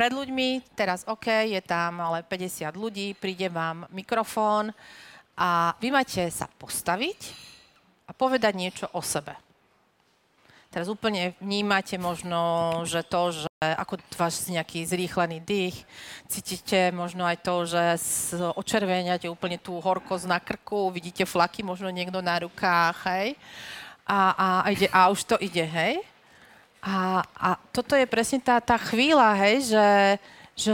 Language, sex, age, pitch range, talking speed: Slovak, female, 40-59, 185-245 Hz, 140 wpm